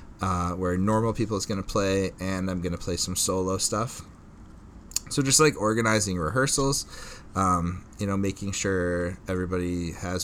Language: English